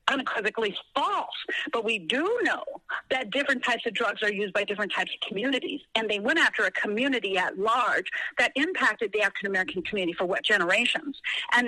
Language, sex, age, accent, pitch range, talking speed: English, female, 50-69, American, 225-315 Hz, 180 wpm